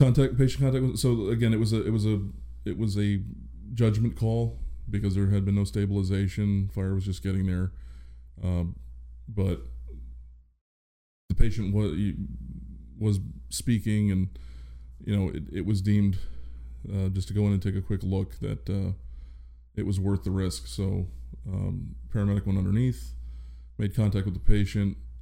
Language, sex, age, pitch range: English, male, 20-39, 65-105 Hz